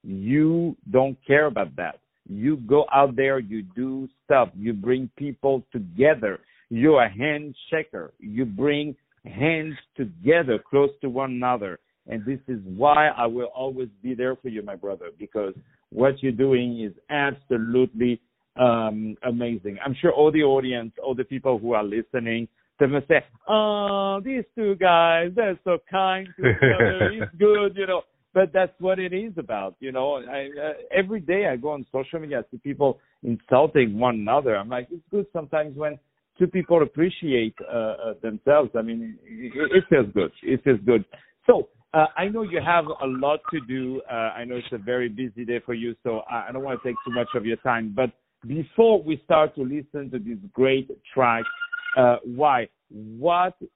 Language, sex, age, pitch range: English, male, 60-79, 125-160 Hz